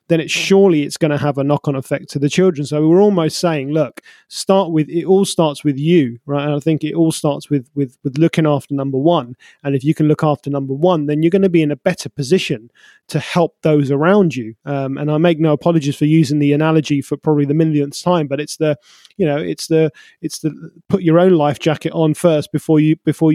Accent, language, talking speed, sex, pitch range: British, English, 245 wpm, male, 145-170 Hz